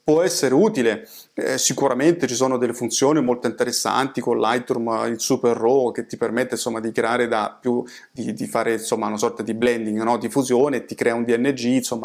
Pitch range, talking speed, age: 120-130 Hz, 200 wpm, 30-49